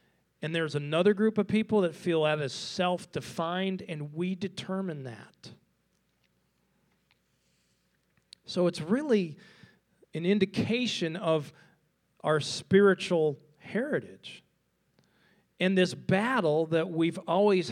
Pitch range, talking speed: 140-185 Hz, 100 wpm